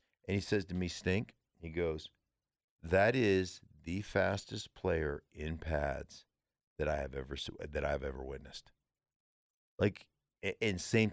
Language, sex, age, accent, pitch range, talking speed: English, male, 50-69, American, 80-100 Hz, 145 wpm